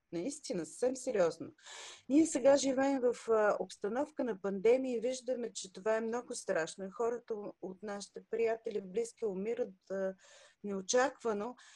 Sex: female